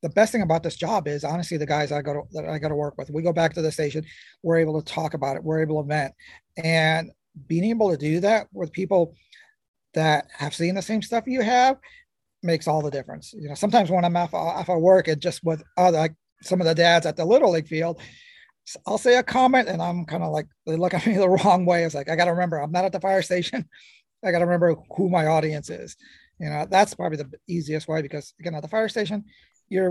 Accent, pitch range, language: American, 145-175 Hz, English